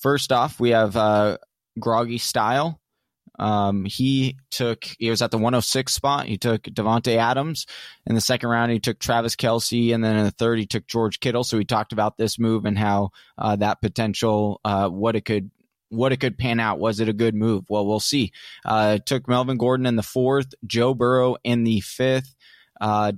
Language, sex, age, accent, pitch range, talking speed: English, male, 20-39, American, 110-125 Hz, 210 wpm